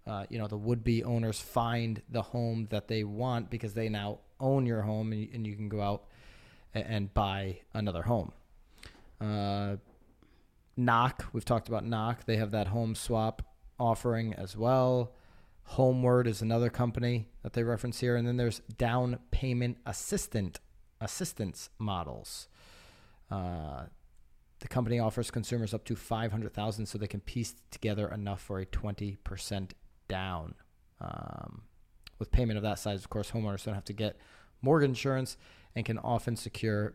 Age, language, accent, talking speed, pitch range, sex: 30-49, English, American, 160 wpm, 100-120 Hz, male